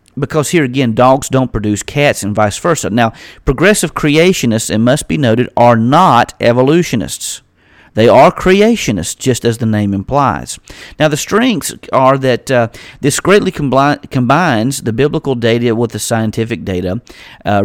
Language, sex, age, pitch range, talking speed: English, male, 40-59, 115-140 Hz, 155 wpm